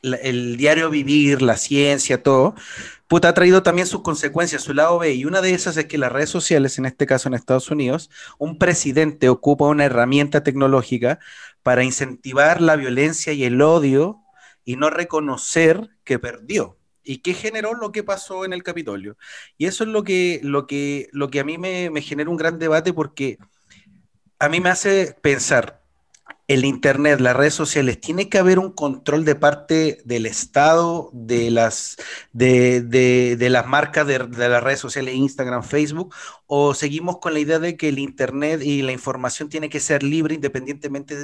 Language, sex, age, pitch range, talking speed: Spanish, male, 30-49, 130-165 Hz, 170 wpm